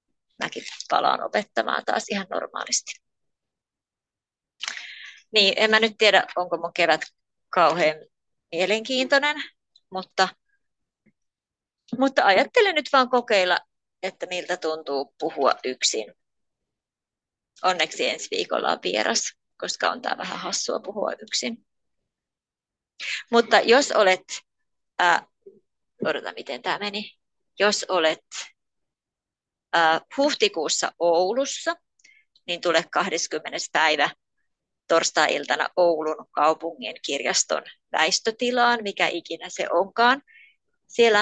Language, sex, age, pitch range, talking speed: Finnish, female, 30-49, 175-275 Hz, 95 wpm